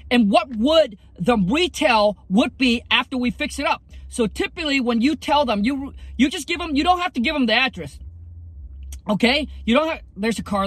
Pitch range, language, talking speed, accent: 210-280 Hz, English, 215 wpm, American